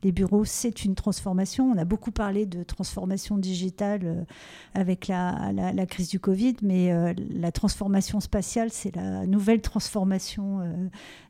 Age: 50-69